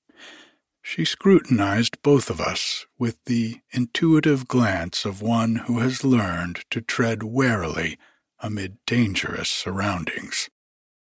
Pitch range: 105-130 Hz